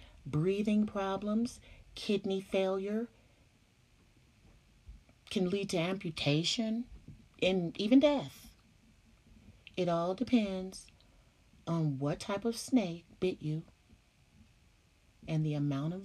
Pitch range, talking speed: 155-200 Hz, 95 wpm